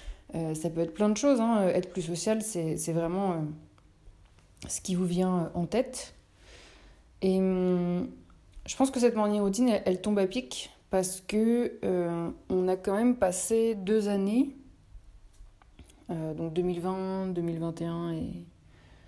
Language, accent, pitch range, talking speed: French, French, 165-210 Hz, 155 wpm